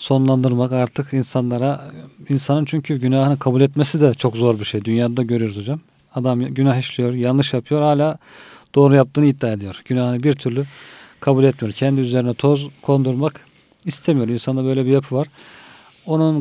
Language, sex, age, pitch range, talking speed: Turkish, male, 40-59, 120-140 Hz, 155 wpm